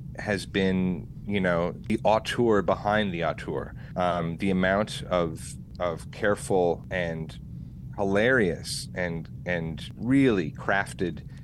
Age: 30-49